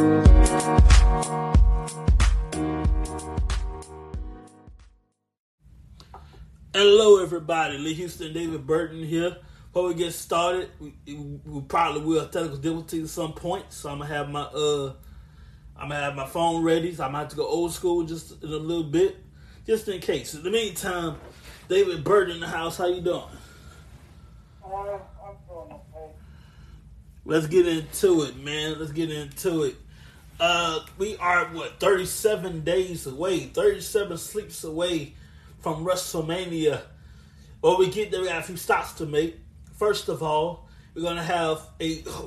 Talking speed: 140 wpm